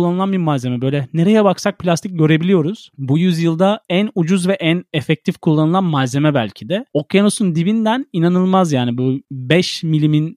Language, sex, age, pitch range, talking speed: Turkish, male, 30-49, 125-165 Hz, 150 wpm